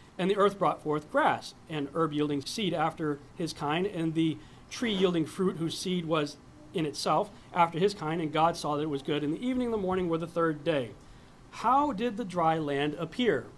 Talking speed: 210 wpm